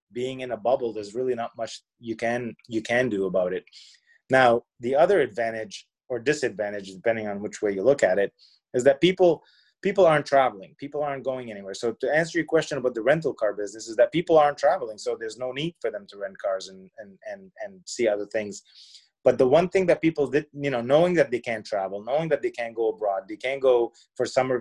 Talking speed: 230 wpm